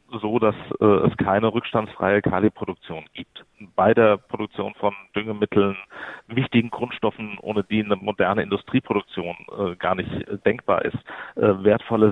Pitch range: 100-115 Hz